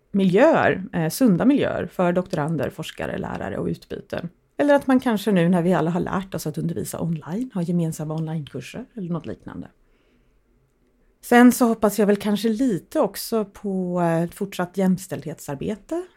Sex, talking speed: female, 150 wpm